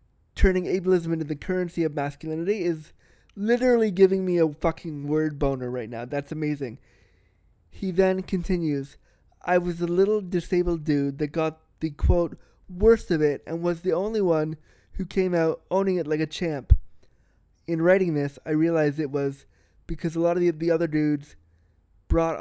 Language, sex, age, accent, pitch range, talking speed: English, male, 20-39, American, 140-170 Hz, 170 wpm